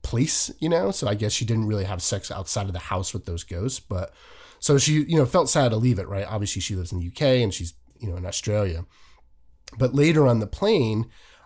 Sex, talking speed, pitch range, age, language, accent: male, 240 wpm, 95-125 Hz, 30-49, English, American